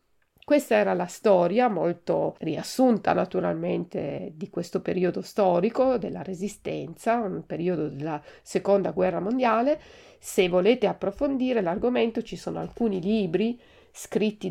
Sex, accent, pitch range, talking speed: female, native, 185-240 Hz, 115 wpm